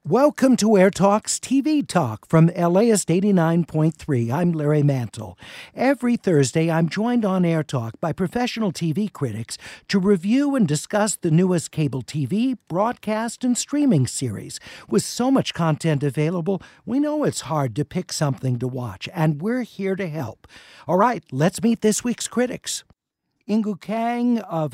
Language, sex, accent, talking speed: English, male, American, 150 wpm